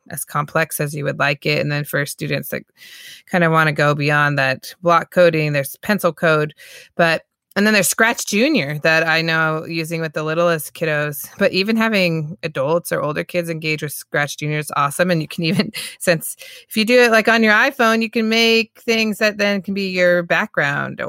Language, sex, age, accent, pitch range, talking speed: English, female, 30-49, American, 150-195 Hz, 210 wpm